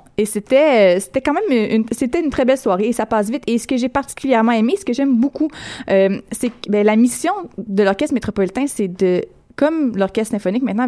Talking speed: 220 wpm